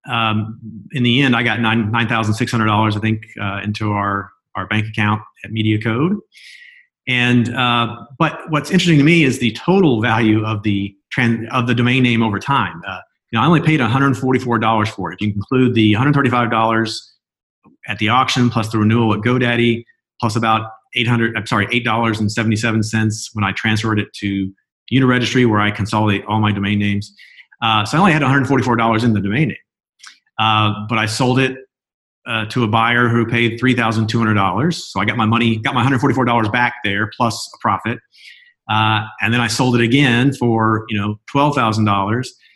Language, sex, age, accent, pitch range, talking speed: English, male, 40-59, American, 105-125 Hz, 225 wpm